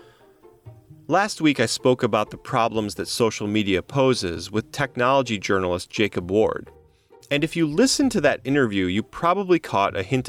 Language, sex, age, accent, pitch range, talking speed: English, male, 30-49, American, 95-130 Hz, 165 wpm